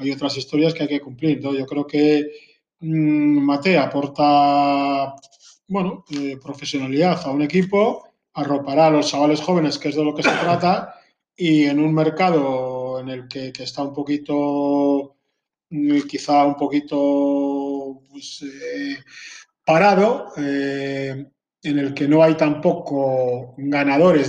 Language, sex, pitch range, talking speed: Spanish, male, 140-155 Hz, 140 wpm